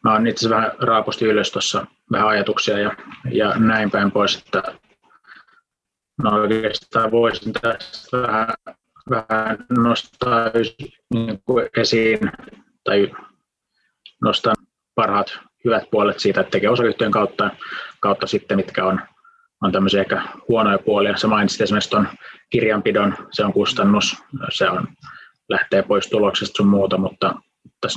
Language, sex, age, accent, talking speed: Finnish, male, 20-39, native, 120 wpm